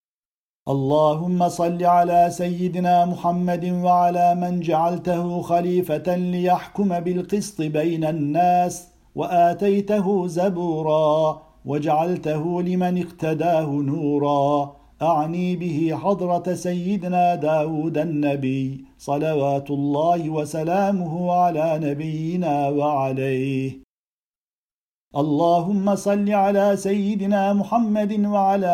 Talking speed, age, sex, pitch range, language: 75 wpm, 50-69, male, 150-180 Hz, Turkish